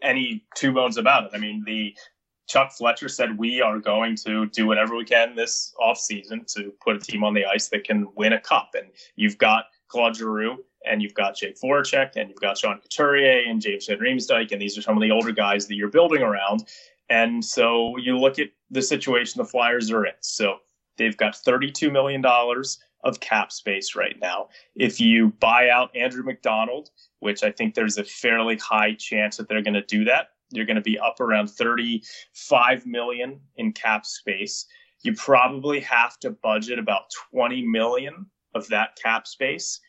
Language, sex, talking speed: English, male, 190 wpm